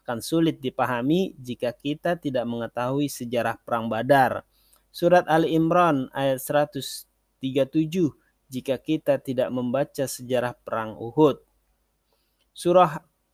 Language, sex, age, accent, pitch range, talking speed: Indonesian, male, 30-49, native, 130-165 Hz, 100 wpm